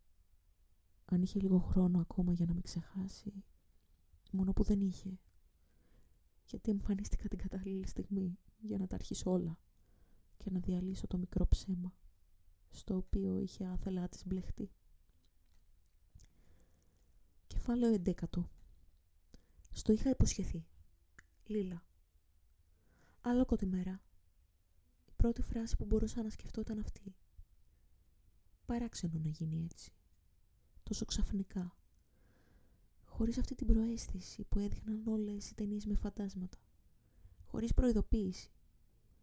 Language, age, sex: Greek, 20-39, female